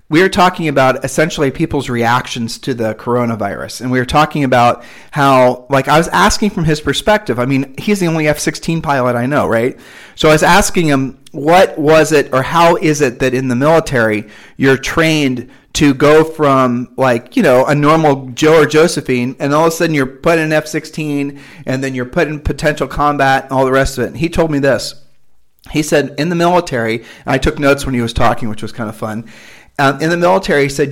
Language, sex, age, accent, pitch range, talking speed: English, male, 40-59, American, 120-150 Hz, 225 wpm